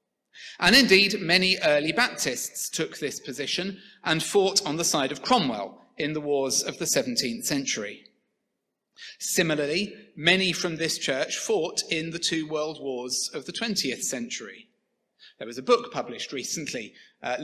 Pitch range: 150-200 Hz